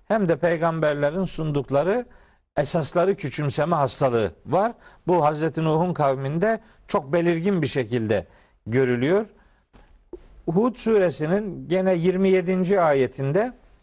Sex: male